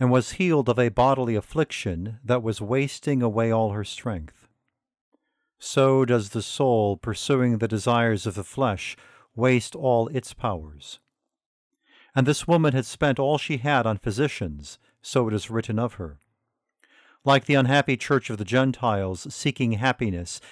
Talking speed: 155 wpm